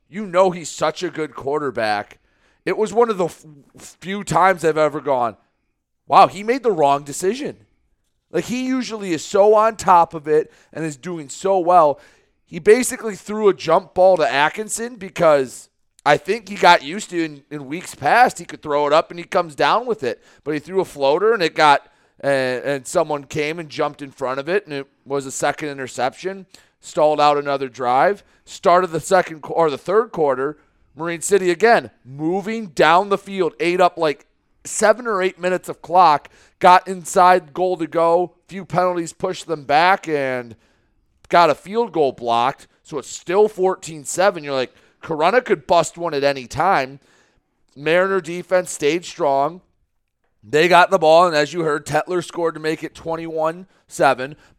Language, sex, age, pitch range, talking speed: English, male, 30-49, 145-190 Hz, 185 wpm